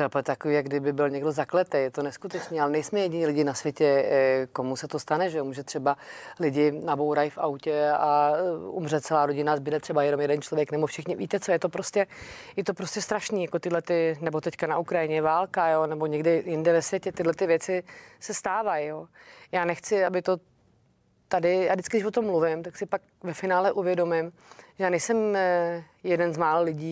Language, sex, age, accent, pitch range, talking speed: Czech, female, 30-49, native, 155-190 Hz, 195 wpm